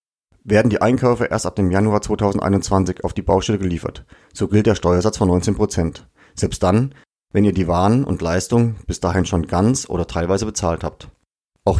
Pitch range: 90-115 Hz